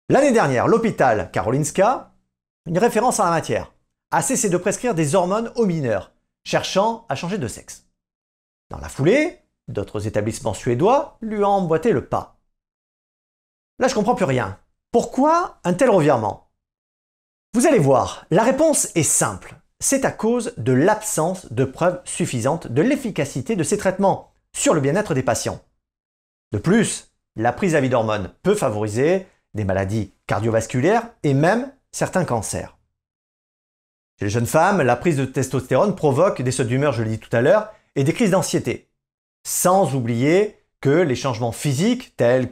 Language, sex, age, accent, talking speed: French, male, 40-59, French, 160 wpm